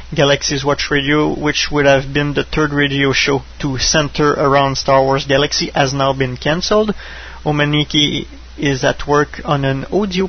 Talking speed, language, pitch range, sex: 165 wpm, English, 135-160 Hz, male